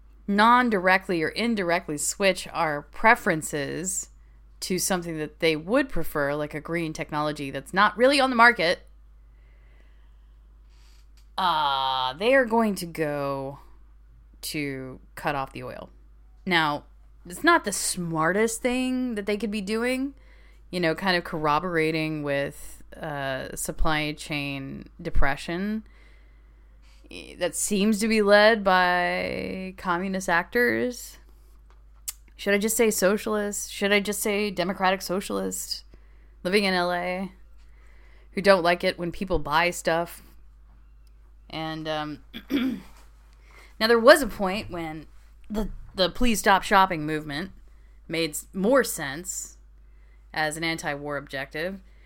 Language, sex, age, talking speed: English, female, 20-39, 120 wpm